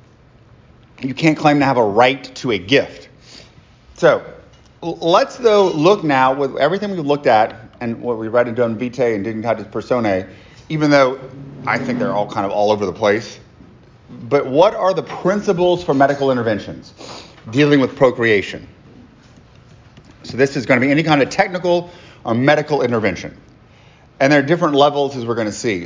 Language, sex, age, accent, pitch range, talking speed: English, male, 30-49, American, 125-165 Hz, 170 wpm